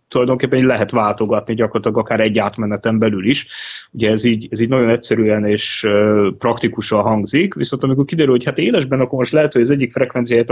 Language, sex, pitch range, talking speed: Hungarian, male, 110-125 Hz, 185 wpm